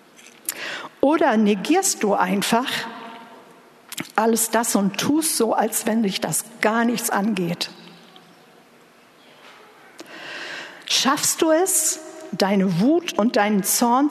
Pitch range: 200-255 Hz